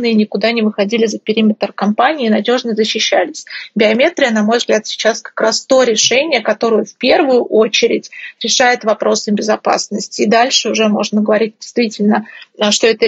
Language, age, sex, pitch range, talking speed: Russian, 30-49, female, 215-245 Hz, 150 wpm